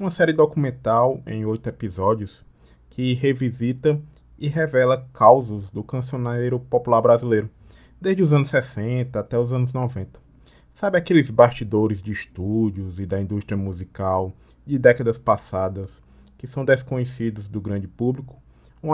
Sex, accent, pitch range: male, Brazilian, 100-125 Hz